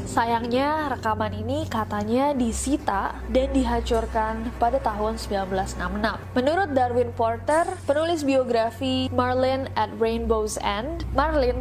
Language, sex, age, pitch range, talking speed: Indonesian, female, 20-39, 220-265 Hz, 105 wpm